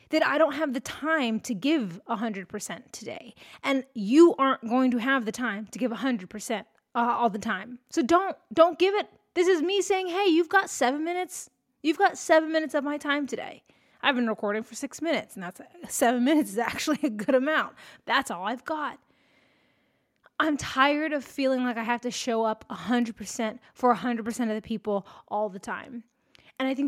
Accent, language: American, English